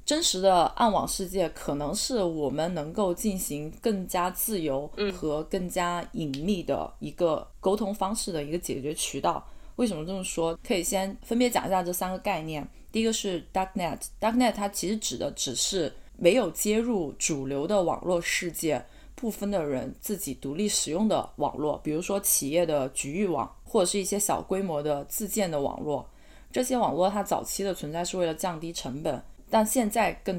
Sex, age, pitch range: female, 20-39, 155-195 Hz